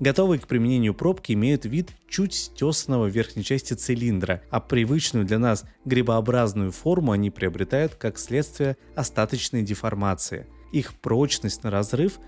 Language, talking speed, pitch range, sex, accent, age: Russian, 135 wpm, 100-135 Hz, male, native, 20-39